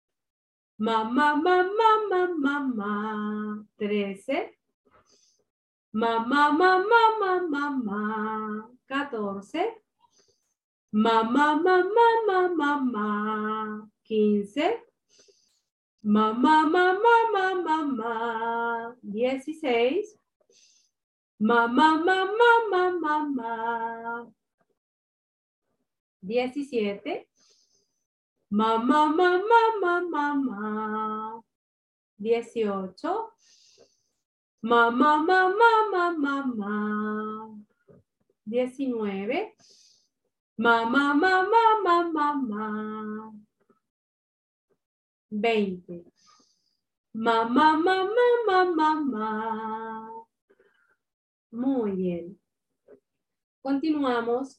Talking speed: 55 wpm